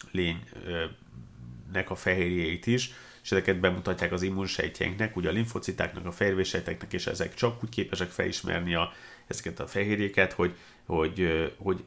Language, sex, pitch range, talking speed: Hungarian, male, 90-100 Hz, 135 wpm